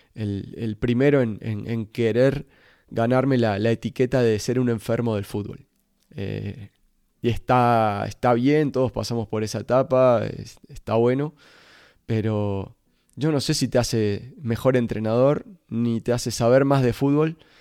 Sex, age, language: male, 20-39, Spanish